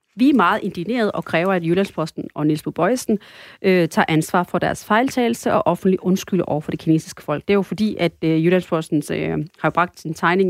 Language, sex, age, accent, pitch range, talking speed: Danish, female, 30-49, native, 165-200 Hz, 210 wpm